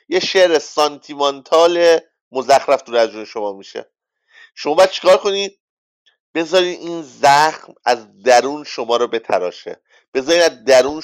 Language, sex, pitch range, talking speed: English, male, 135-185 Hz, 120 wpm